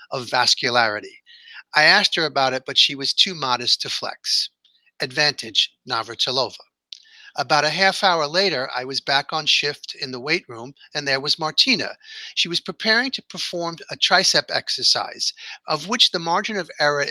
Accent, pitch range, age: American, 135-190 Hz, 50-69